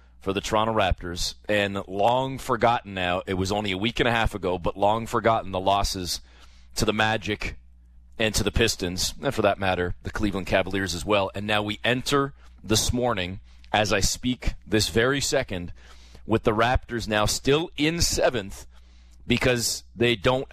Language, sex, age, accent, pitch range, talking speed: English, male, 30-49, American, 80-125 Hz, 175 wpm